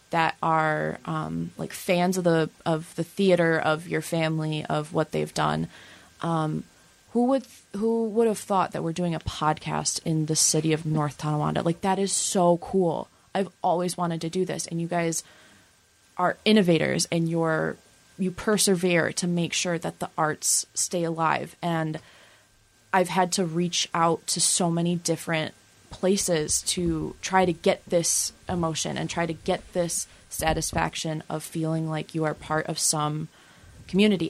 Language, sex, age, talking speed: English, female, 20-39, 165 wpm